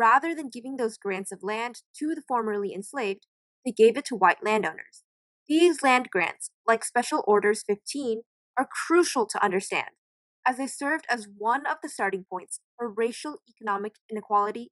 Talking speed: 165 wpm